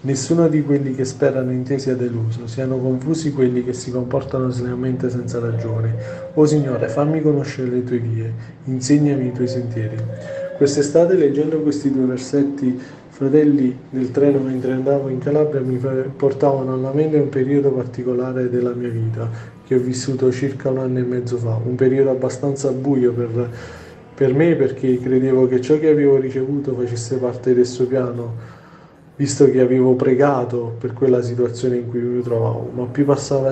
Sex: male